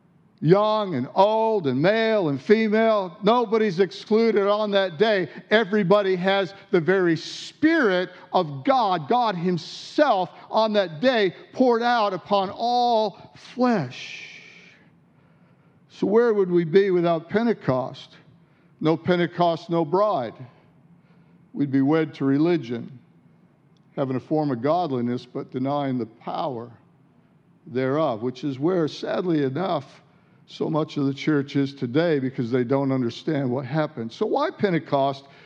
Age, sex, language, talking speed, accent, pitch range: 50-69, male, English, 130 wpm, American, 155-220 Hz